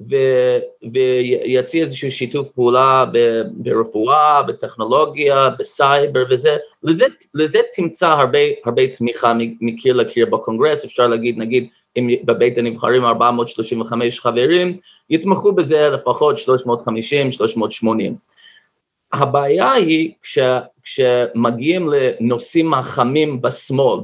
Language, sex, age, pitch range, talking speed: Hebrew, male, 30-49, 120-160 Hz, 95 wpm